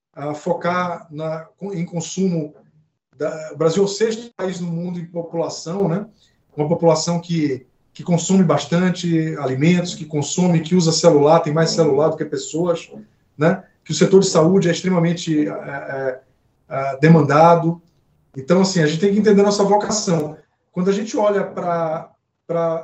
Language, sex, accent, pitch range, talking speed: Portuguese, male, Brazilian, 150-185 Hz, 165 wpm